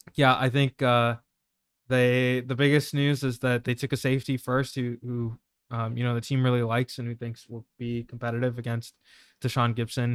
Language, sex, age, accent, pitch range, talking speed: English, male, 20-39, American, 115-130 Hz, 195 wpm